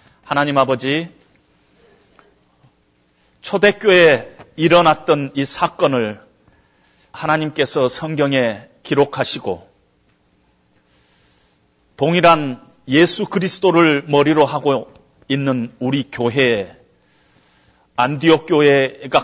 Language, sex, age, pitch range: Korean, male, 40-59, 115-150 Hz